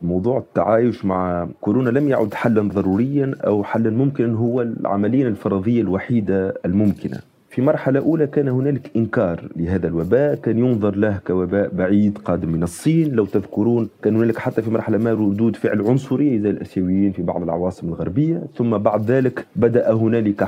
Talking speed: 160 wpm